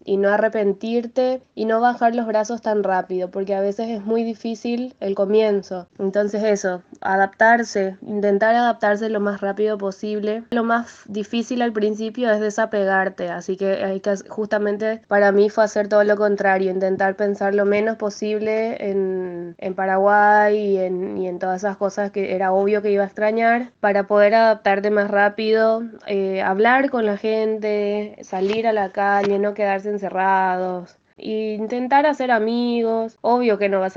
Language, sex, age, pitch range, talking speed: Spanish, female, 20-39, 195-220 Hz, 165 wpm